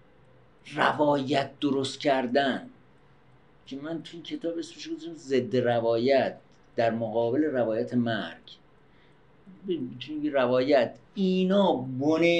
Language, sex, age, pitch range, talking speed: Persian, male, 50-69, 125-175 Hz, 75 wpm